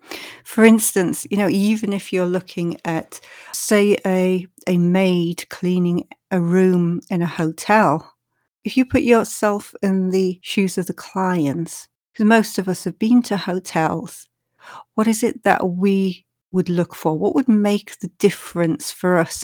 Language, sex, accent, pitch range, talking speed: English, female, British, 175-205 Hz, 160 wpm